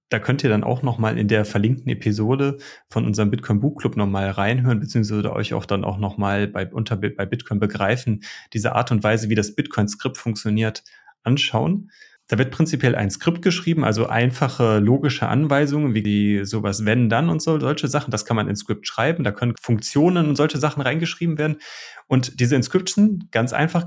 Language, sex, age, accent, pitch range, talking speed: German, male, 30-49, German, 115-150 Hz, 185 wpm